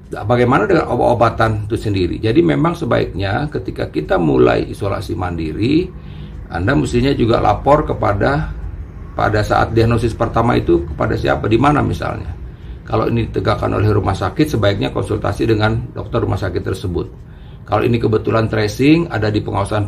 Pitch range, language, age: 95-115 Hz, Indonesian, 50-69